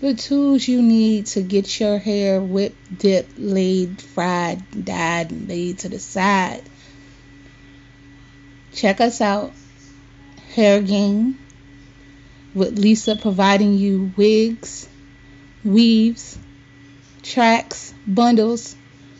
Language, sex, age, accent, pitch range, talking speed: English, female, 30-49, American, 140-220 Hz, 95 wpm